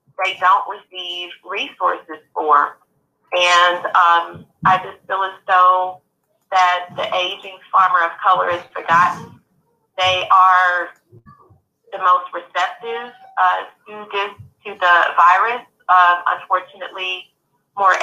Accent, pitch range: American, 175-195 Hz